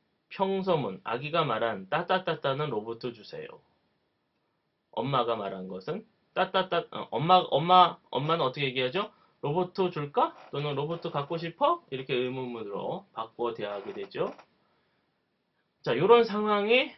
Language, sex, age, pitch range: Korean, male, 30-49, 130-185 Hz